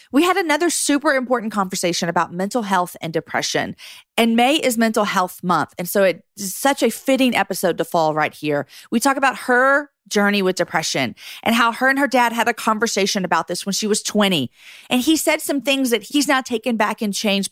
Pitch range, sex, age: 170-230 Hz, female, 40-59